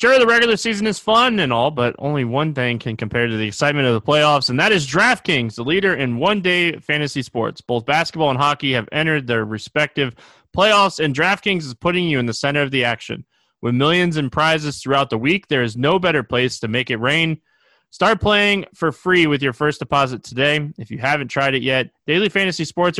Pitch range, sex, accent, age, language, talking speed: 130-170 Hz, male, American, 20-39, English, 220 wpm